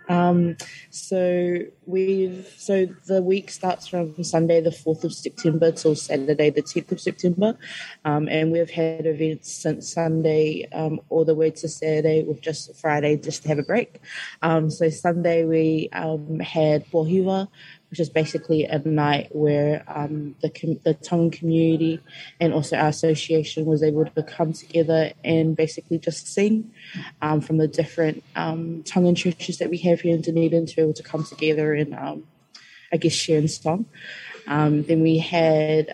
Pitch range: 155-170 Hz